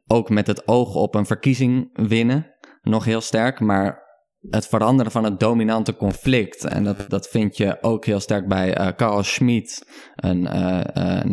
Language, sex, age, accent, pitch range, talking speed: Dutch, male, 20-39, Dutch, 100-115 Hz, 175 wpm